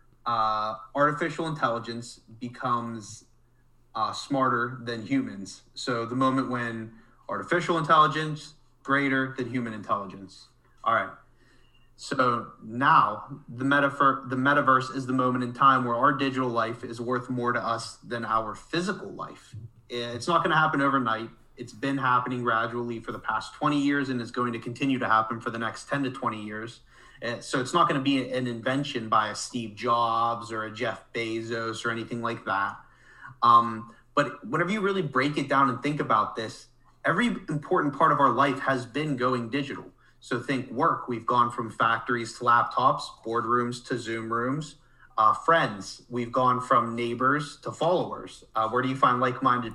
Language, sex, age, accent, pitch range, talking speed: English, male, 30-49, American, 115-135 Hz, 170 wpm